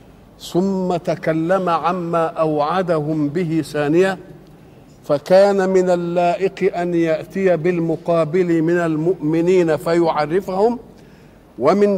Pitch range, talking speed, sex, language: 160-190 Hz, 80 wpm, male, Arabic